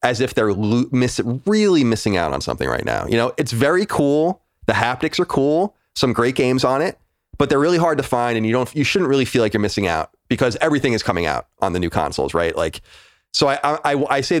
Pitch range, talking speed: 100-135 Hz, 240 wpm